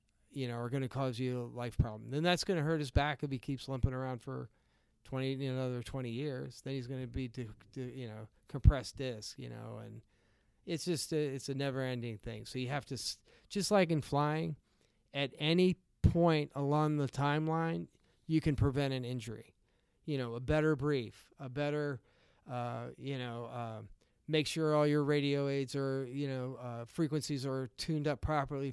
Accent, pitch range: American, 125-150 Hz